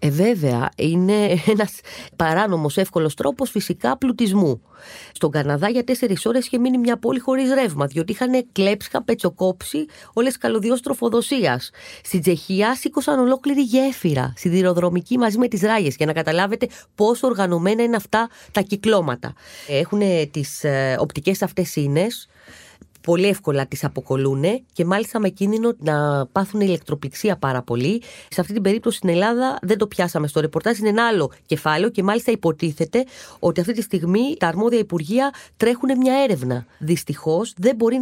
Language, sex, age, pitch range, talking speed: Greek, female, 30-49, 170-245 Hz, 150 wpm